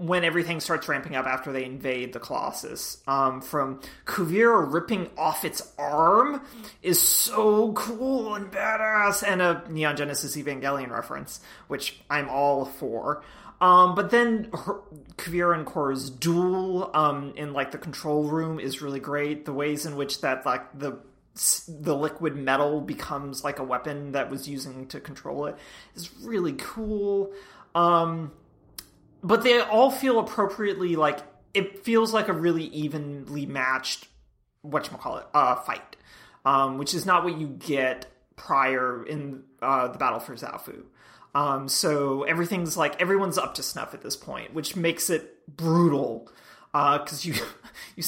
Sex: male